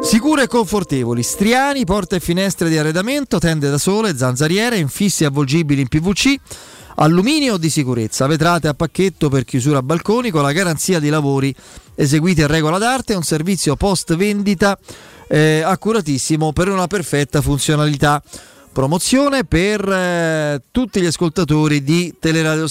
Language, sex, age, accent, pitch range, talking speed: Italian, male, 30-49, native, 150-195 Hz, 145 wpm